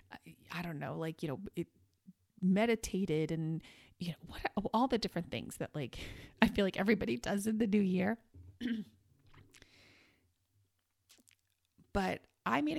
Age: 30-49